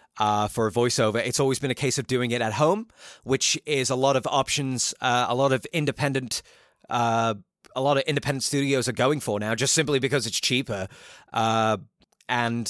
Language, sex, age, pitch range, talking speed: English, male, 30-49, 115-150 Hz, 200 wpm